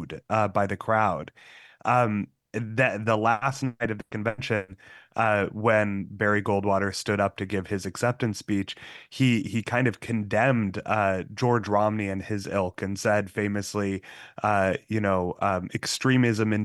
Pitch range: 100-120 Hz